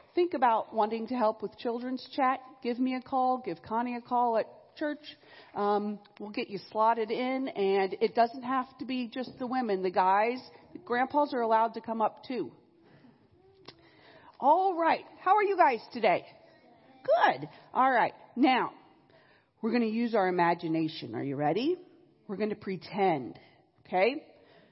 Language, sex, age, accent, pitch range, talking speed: English, female, 40-59, American, 200-300 Hz, 165 wpm